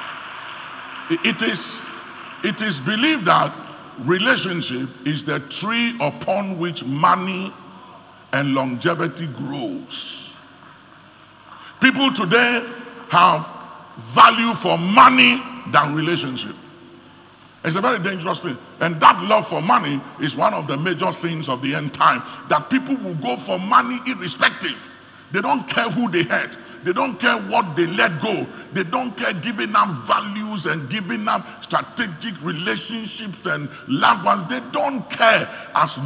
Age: 50-69